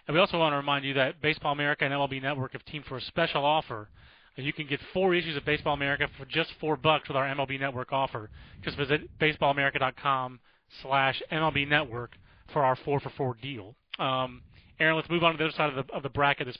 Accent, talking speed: American, 230 wpm